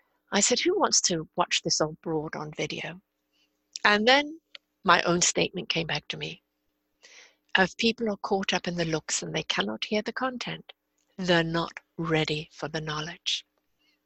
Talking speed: 170 wpm